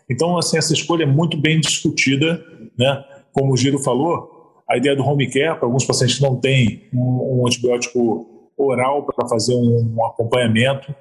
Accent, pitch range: Brazilian, 125-155 Hz